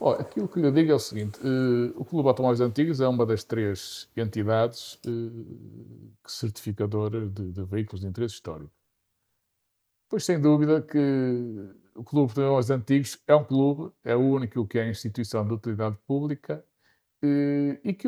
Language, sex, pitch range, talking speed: Portuguese, male, 105-130 Hz, 165 wpm